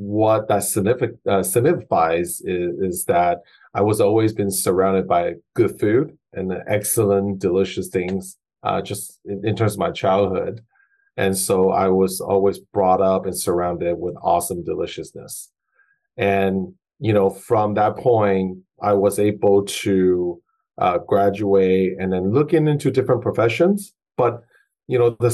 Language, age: English, 40-59